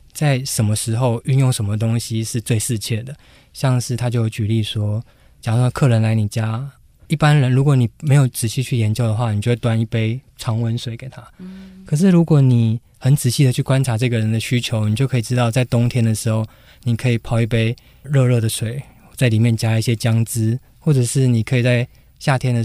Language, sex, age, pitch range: Chinese, male, 20-39, 115-130 Hz